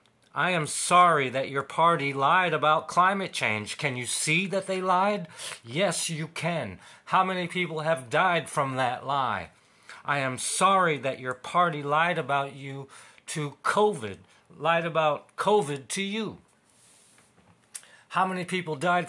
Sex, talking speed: male, 150 wpm